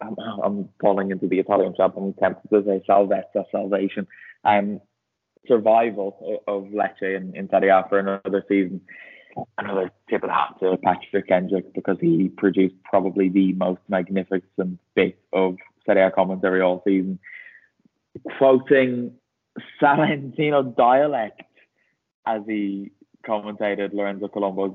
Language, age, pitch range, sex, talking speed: English, 20-39, 95-105 Hz, male, 130 wpm